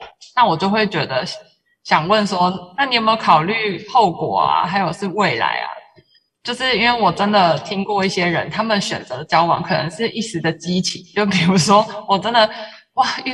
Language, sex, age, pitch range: Chinese, female, 20-39, 175-215 Hz